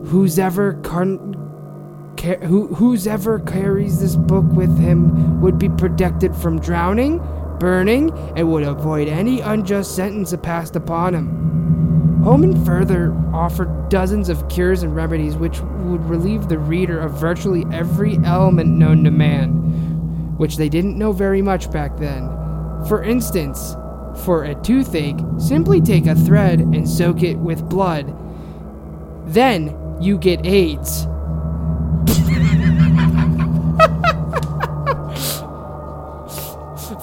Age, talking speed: 20-39, 115 wpm